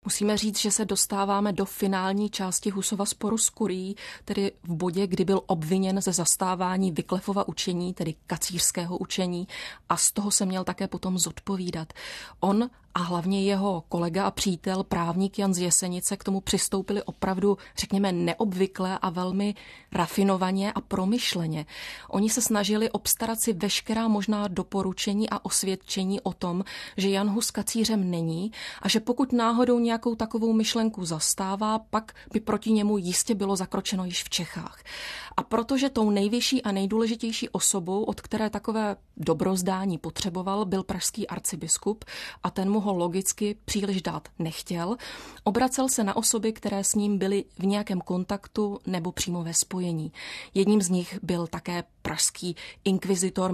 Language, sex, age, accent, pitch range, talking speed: Czech, female, 30-49, native, 185-210 Hz, 150 wpm